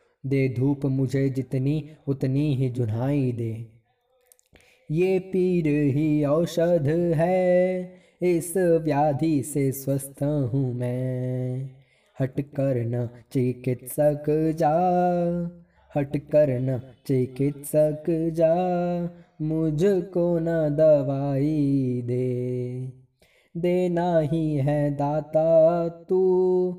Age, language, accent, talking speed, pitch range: 20-39, Hindi, native, 85 wpm, 135-165 Hz